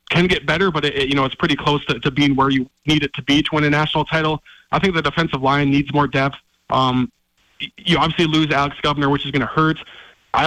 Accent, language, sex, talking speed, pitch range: American, English, male, 250 wpm, 135-155 Hz